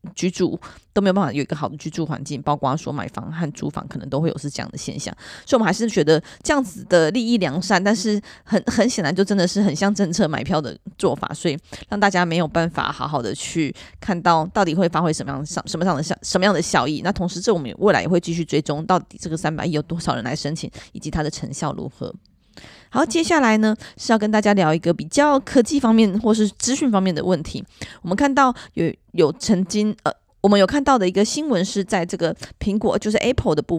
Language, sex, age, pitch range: Chinese, female, 20-39, 165-215 Hz